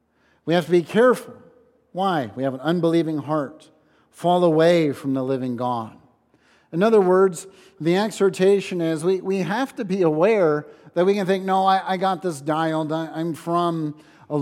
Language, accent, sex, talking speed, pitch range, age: English, American, male, 180 wpm, 155-195 Hz, 50-69